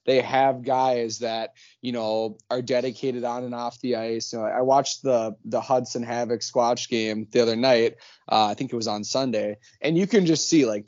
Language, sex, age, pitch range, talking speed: English, male, 20-39, 120-135 Hz, 220 wpm